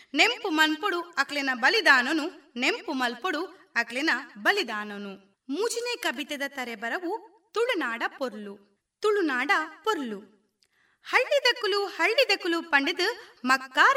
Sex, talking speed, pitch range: female, 50 wpm, 265-405 Hz